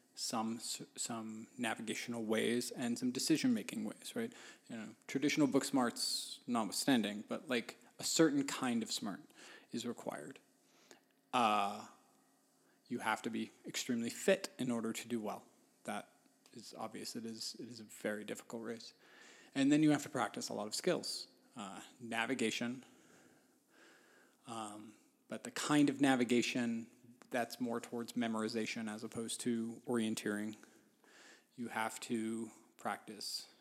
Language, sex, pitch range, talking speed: English, male, 115-140 Hz, 140 wpm